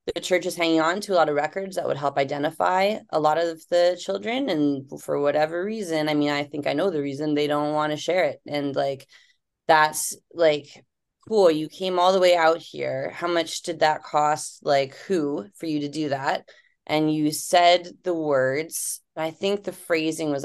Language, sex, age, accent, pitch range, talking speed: English, female, 20-39, American, 140-175 Hz, 210 wpm